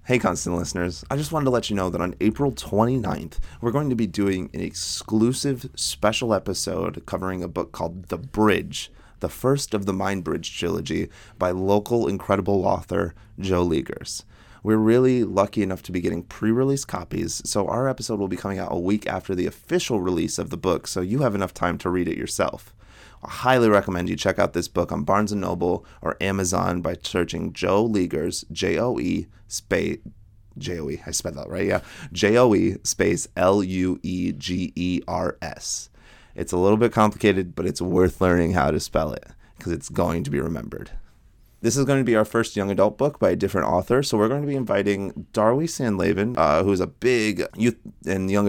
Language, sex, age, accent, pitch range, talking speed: English, male, 30-49, American, 90-115 Hz, 190 wpm